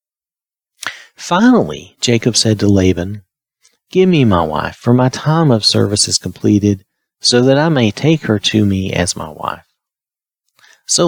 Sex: male